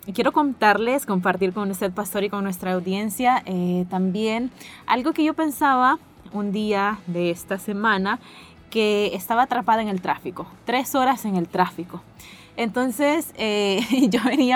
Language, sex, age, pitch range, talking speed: Spanish, female, 20-39, 190-255 Hz, 150 wpm